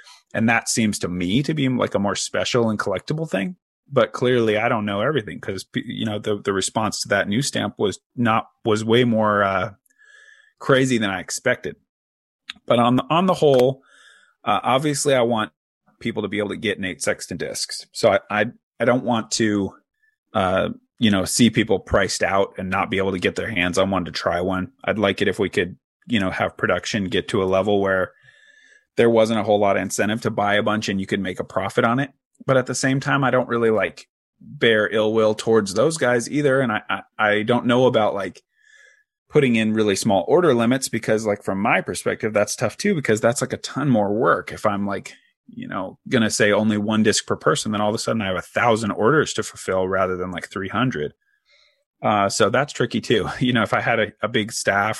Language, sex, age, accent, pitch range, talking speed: English, male, 30-49, American, 105-135 Hz, 225 wpm